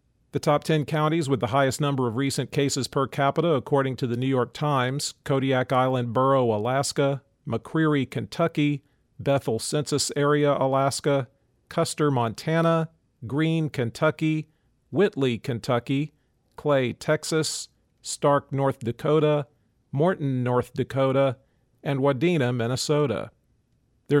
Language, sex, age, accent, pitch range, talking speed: English, male, 40-59, American, 125-150 Hz, 115 wpm